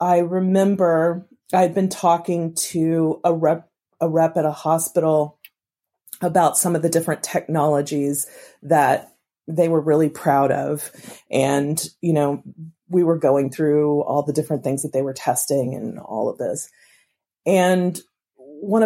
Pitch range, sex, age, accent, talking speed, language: 150-180 Hz, female, 30-49, American, 145 wpm, English